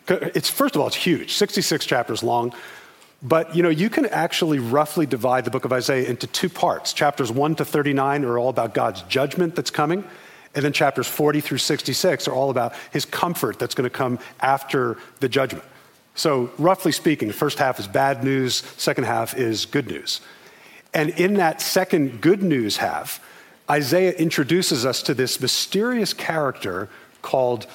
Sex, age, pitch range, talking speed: male, 40-59, 130-160 Hz, 175 wpm